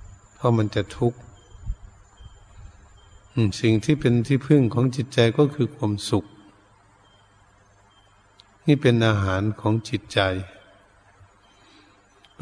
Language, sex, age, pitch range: Thai, male, 70-89, 100-115 Hz